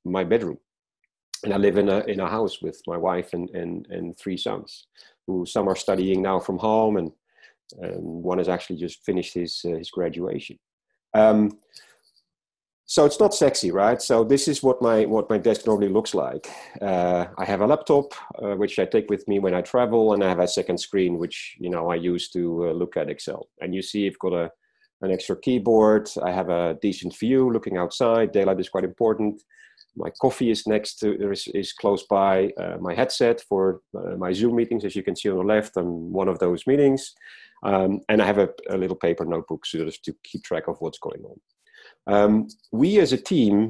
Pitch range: 95-115 Hz